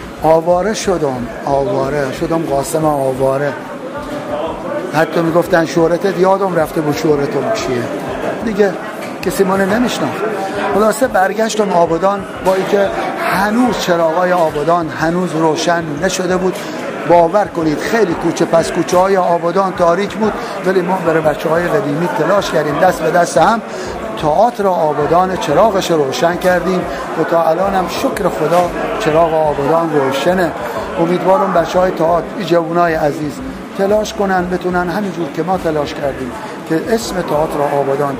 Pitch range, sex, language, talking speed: 160-190 Hz, male, Persian, 140 wpm